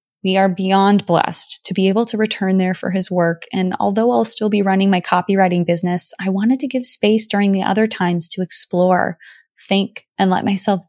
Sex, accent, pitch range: female, American, 180-205 Hz